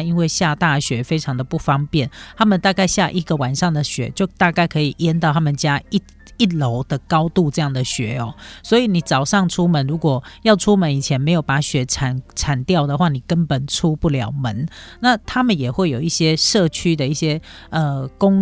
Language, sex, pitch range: Chinese, female, 135-175 Hz